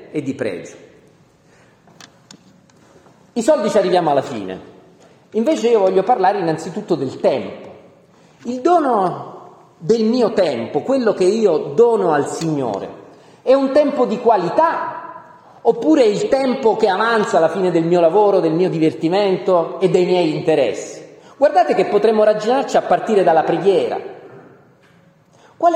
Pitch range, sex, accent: 185-305 Hz, male, native